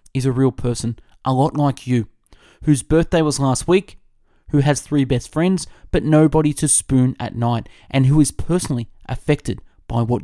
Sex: male